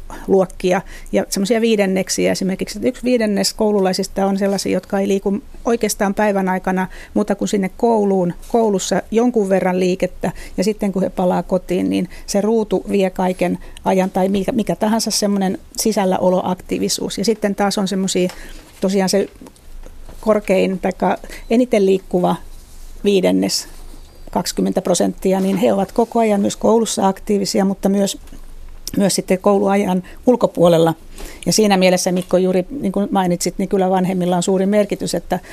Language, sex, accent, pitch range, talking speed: Finnish, female, native, 185-210 Hz, 140 wpm